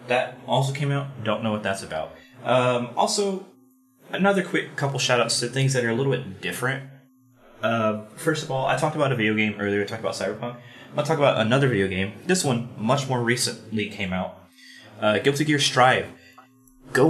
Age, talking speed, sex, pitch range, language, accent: 20-39, 200 wpm, male, 105-135 Hz, English, American